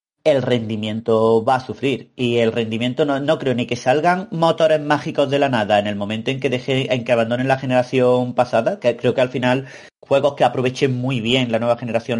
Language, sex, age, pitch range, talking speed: Spanish, male, 30-49, 115-135 Hz, 215 wpm